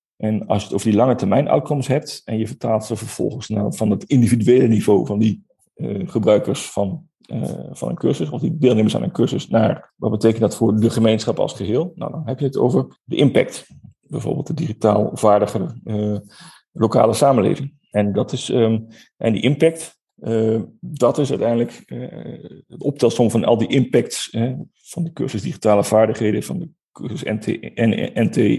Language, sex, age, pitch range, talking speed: Dutch, male, 40-59, 105-125 Hz, 185 wpm